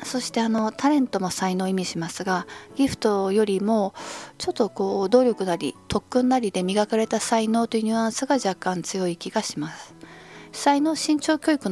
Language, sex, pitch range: Japanese, female, 175-225 Hz